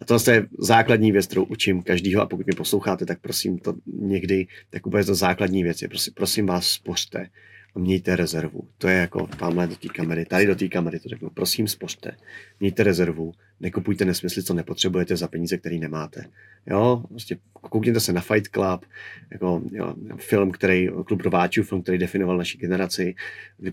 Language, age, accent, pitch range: Czech, 30-49, native, 90-100 Hz